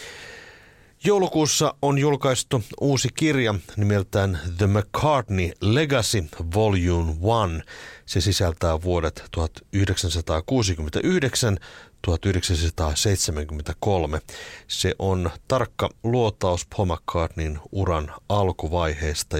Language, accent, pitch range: Finnish, native, 90-120 Hz